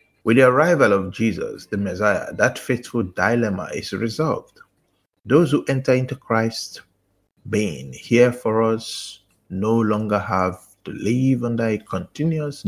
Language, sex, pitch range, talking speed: English, male, 105-165 Hz, 135 wpm